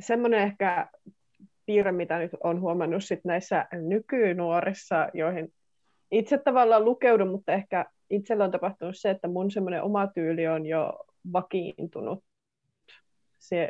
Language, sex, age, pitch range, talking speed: Finnish, female, 20-39, 165-200 Hz, 125 wpm